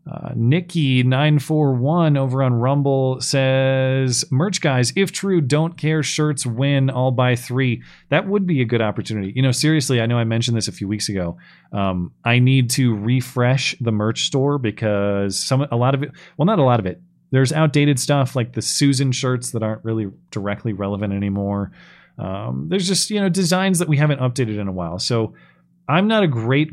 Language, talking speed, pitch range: English, 200 wpm, 110-140 Hz